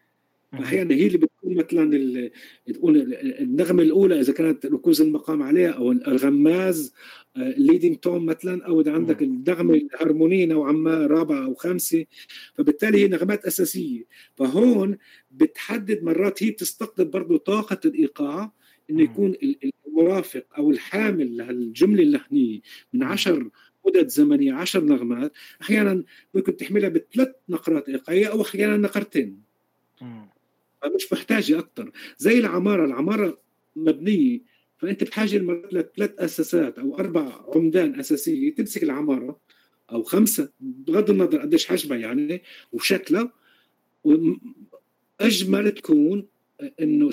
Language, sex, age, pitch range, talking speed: Arabic, male, 50-69, 180-300 Hz, 115 wpm